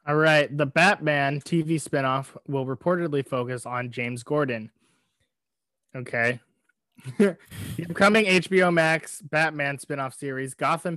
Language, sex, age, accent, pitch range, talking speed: English, male, 20-39, American, 130-160 Hz, 115 wpm